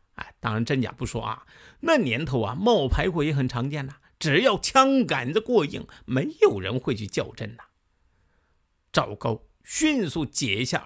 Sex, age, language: male, 50-69, Chinese